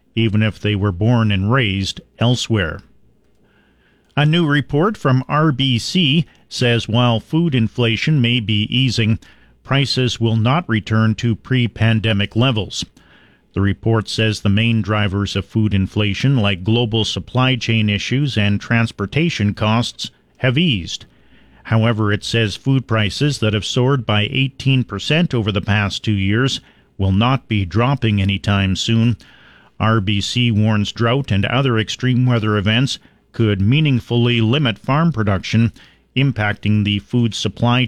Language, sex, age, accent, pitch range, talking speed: English, male, 40-59, American, 105-130 Hz, 135 wpm